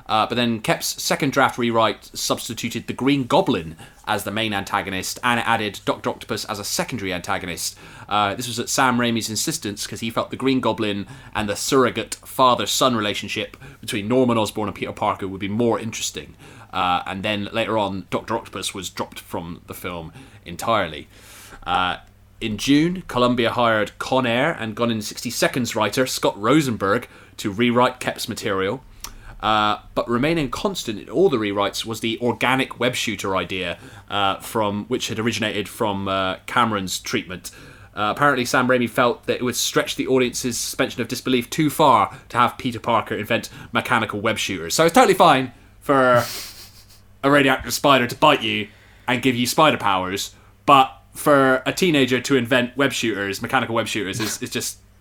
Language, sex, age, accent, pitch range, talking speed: English, male, 30-49, British, 100-125 Hz, 175 wpm